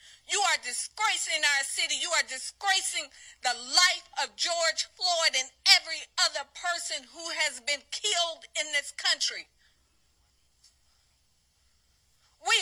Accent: American